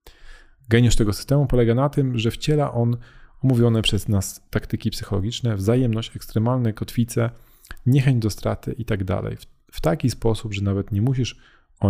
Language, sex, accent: Polish, male, native